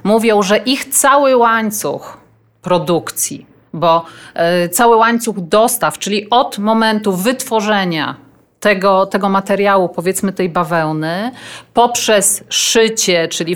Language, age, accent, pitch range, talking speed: Polish, 50-69, native, 175-230 Hz, 100 wpm